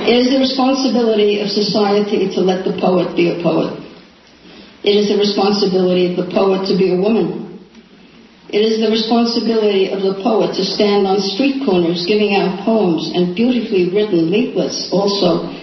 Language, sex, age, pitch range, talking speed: English, female, 50-69, 185-220 Hz, 170 wpm